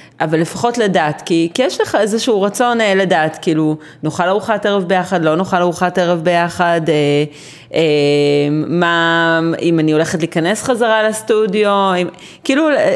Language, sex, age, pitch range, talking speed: Hebrew, female, 30-49, 160-205 Hz, 145 wpm